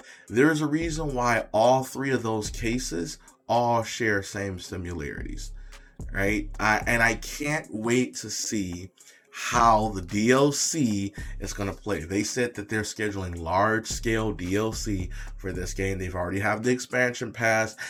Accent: American